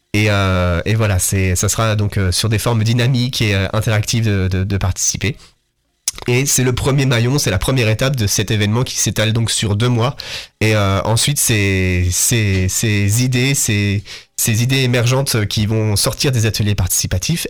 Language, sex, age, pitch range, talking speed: French, male, 30-49, 105-125 Hz, 190 wpm